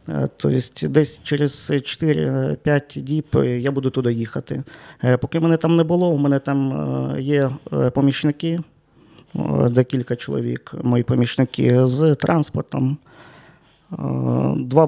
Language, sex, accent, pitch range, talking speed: Ukrainian, male, native, 125-150 Hz, 105 wpm